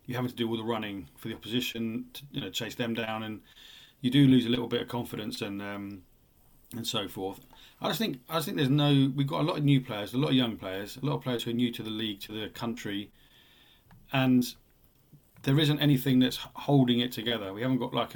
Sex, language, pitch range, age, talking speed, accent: male, English, 115-135 Hz, 30-49, 250 wpm, British